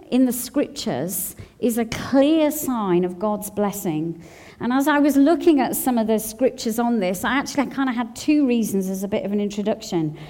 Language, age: English, 40-59